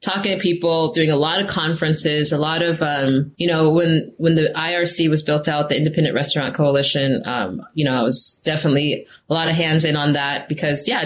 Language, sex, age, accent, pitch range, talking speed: English, female, 20-39, American, 150-185 Hz, 215 wpm